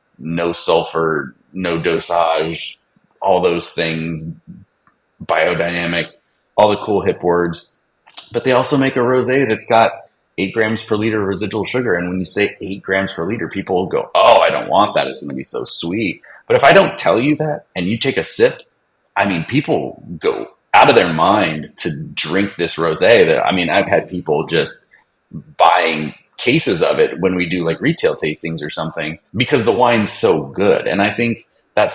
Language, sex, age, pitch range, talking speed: English, male, 30-49, 80-115 Hz, 190 wpm